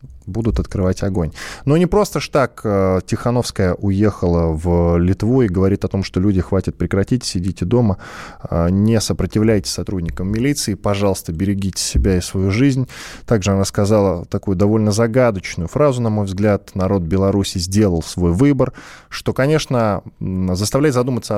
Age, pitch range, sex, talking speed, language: 20-39, 95-115 Hz, male, 145 wpm, Russian